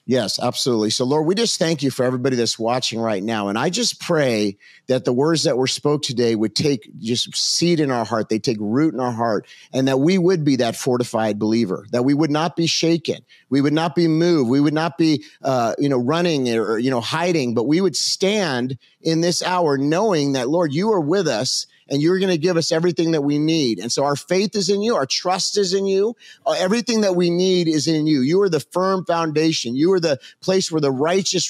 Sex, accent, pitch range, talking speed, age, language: male, American, 135-185 Hz, 235 wpm, 40-59, English